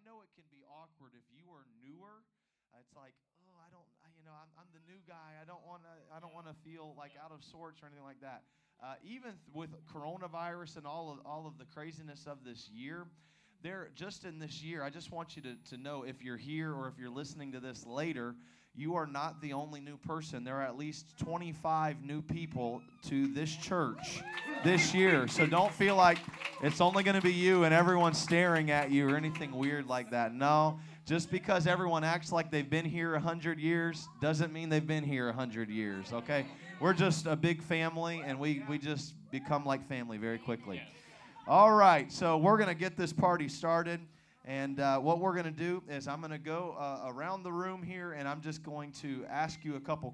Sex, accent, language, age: male, American, English, 30-49